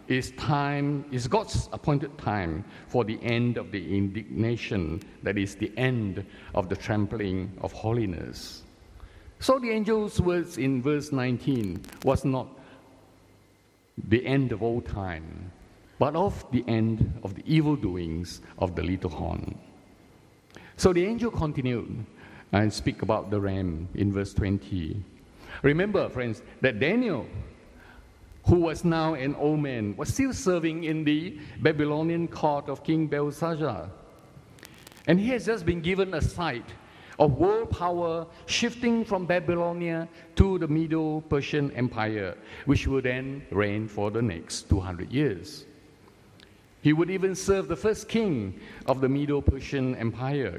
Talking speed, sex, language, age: 140 wpm, male, English, 50-69